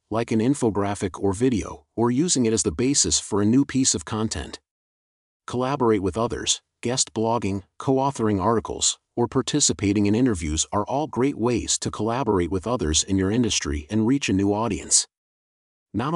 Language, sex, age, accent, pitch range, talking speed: English, male, 40-59, American, 95-120 Hz, 165 wpm